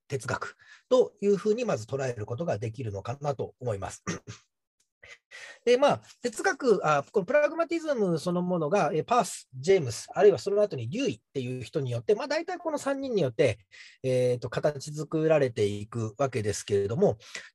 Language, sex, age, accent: Japanese, male, 40-59, native